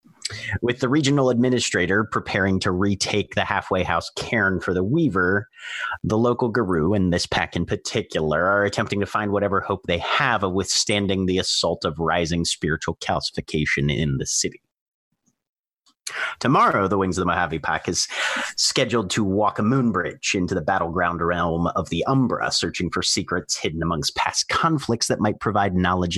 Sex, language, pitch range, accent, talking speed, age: male, English, 90-115 Hz, American, 165 wpm, 30-49